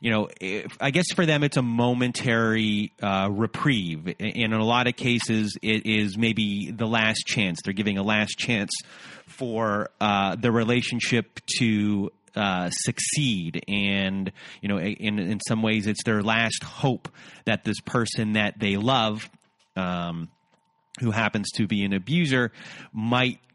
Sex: male